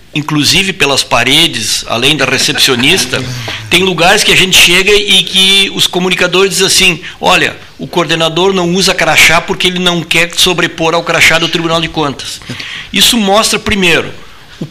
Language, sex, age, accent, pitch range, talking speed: Portuguese, male, 60-79, Brazilian, 145-180 Hz, 160 wpm